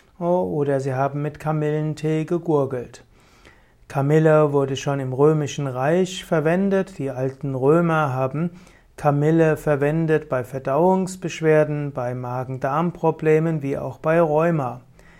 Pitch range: 140-170 Hz